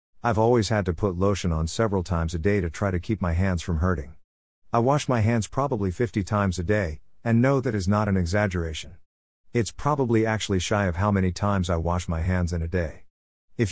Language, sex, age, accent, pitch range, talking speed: English, male, 50-69, American, 85-115 Hz, 225 wpm